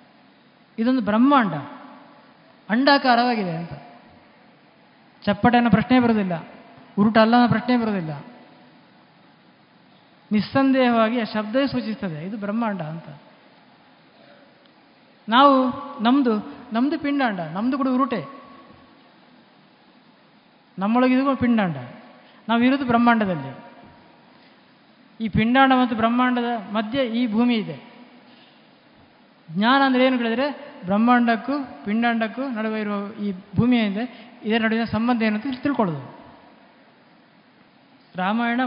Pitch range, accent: 200-255 Hz, native